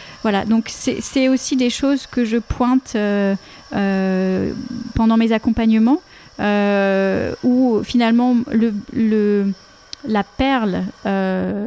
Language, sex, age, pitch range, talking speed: French, female, 30-49, 200-240 Hz, 105 wpm